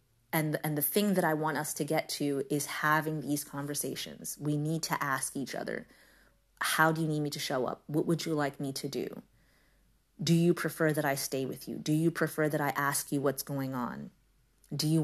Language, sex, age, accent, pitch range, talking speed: English, female, 30-49, American, 145-165 Hz, 225 wpm